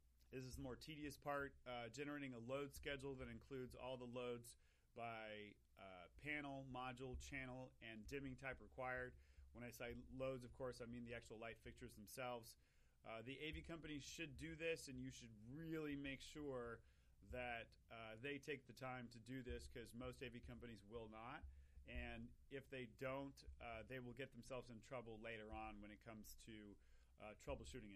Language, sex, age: English, male, 40-59